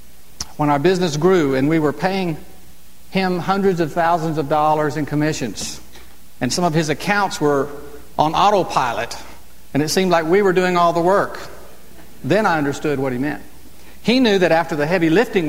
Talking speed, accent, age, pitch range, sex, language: 180 wpm, American, 50-69, 130-185 Hz, male, English